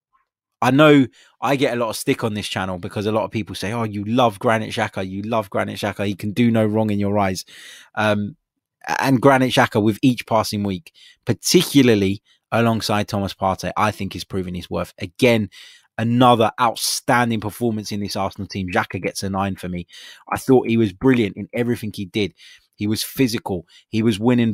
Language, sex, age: English, male, 20-39